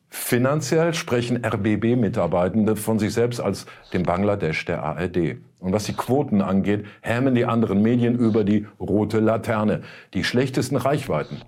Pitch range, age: 105-130 Hz, 50-69